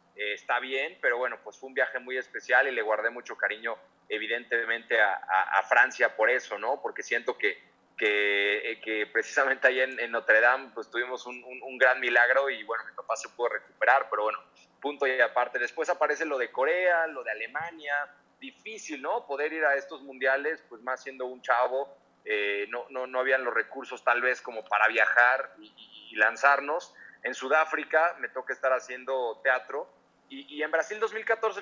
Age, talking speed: 30-49, 190 wpm